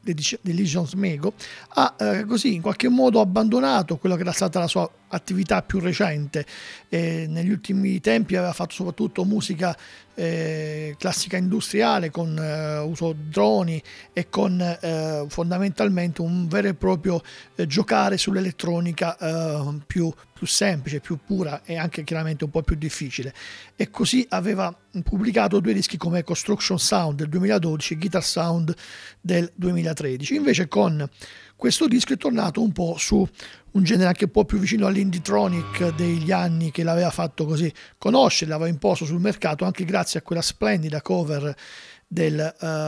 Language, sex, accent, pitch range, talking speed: Italian, male, native, 160-195 Hz, 150 wpm